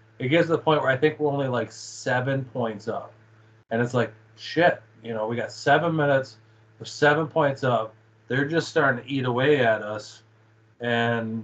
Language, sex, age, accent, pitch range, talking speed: English, male, 20-39, American, 110-135 Hz, 195 wpm